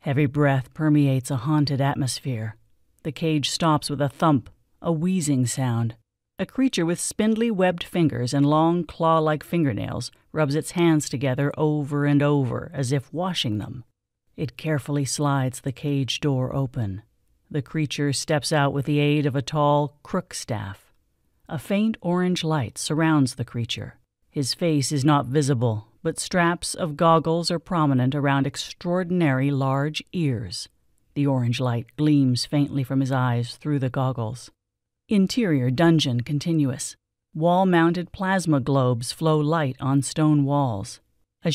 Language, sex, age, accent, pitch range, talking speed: English, female, 40-59, American, 125-155 Hz, 145 wpm